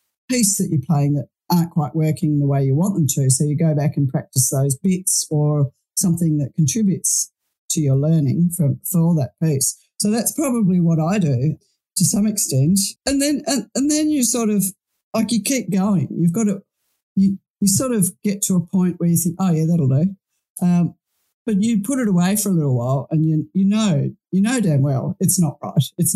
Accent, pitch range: Australian, 150-195 Hz